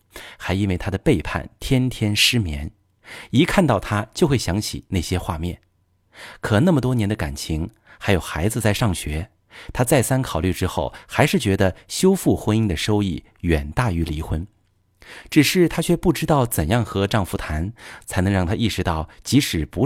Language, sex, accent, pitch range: Chinese, male, native, 90-120 Hz